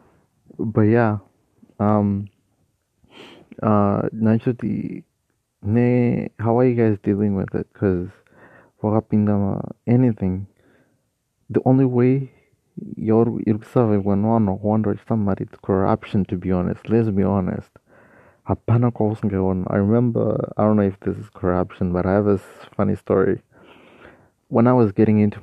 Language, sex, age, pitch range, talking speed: English, male, 30-49, 95-110 Hz, 115 wpm